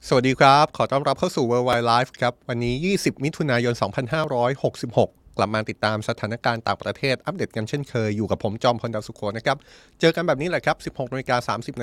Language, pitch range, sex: Thai, 115-155 Hz, male